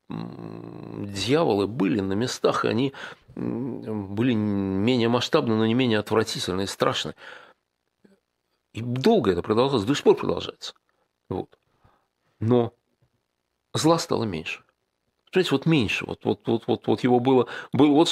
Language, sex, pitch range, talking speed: Russian, male, 100-135 Hz, 130 wpm